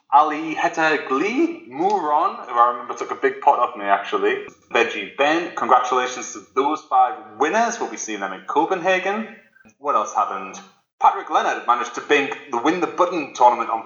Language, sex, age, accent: English, male, 20-39, British